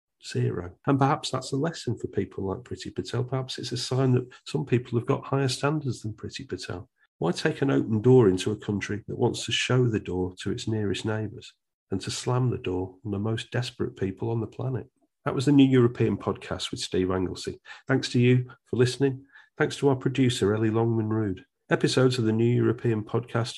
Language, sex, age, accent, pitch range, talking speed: English, male, 40-59, British, 105-130 Hz, 210 wpm